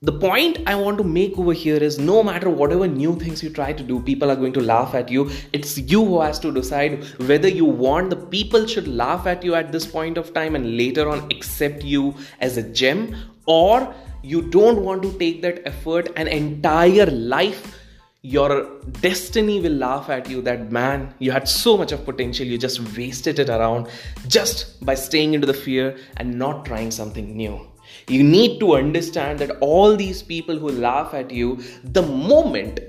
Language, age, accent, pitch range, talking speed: English, 20-39, Indian, 135-185 Hz, 195 wpm